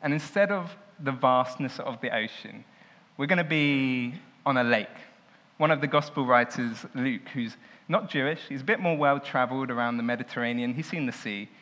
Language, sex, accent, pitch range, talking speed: English, male, British, 120-160 Hz, 185 wpm